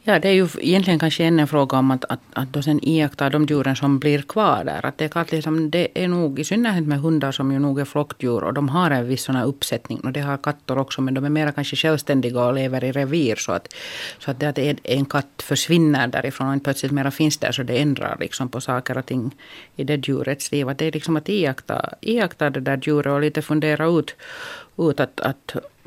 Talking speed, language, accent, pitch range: 240 wpm, Finnish, native, 135-155 Hz